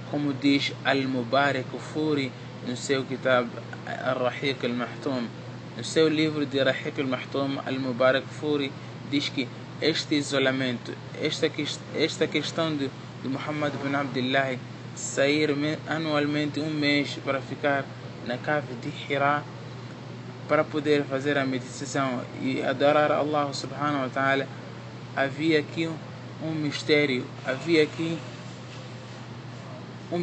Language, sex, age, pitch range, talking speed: Portuguese, male, 20-39, 130-150 Hz, 125 wpm